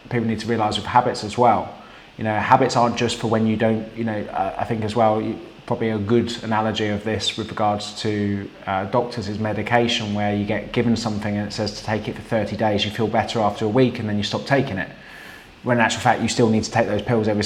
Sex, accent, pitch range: male, British, 105-120 Hz